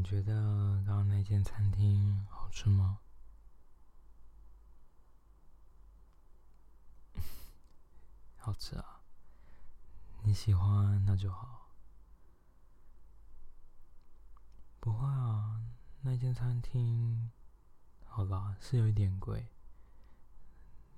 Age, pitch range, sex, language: 20-39, 80-105 Hz, male, Chinese